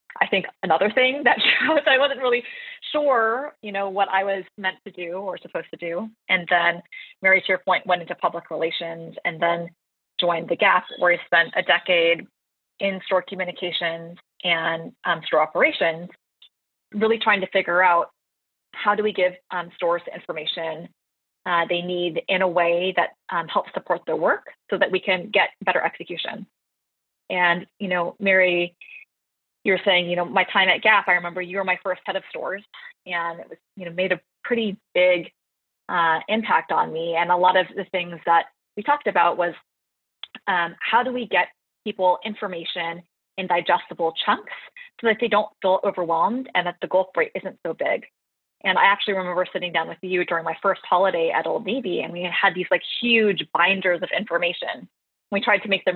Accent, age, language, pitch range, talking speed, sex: American, 20-39, English, 170-200 Hz, 195 wpm, female